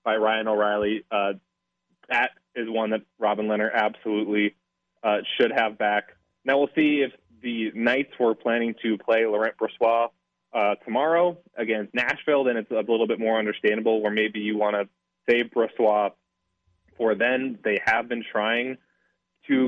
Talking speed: 160 wpm